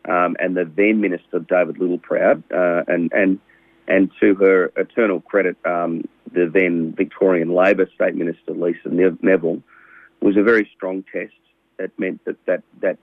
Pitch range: 85-100 Hz